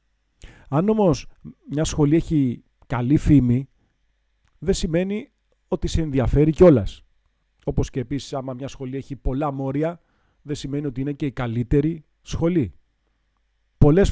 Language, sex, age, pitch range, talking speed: Greek, male, 40-59, 120-155 Hz, 130 wpm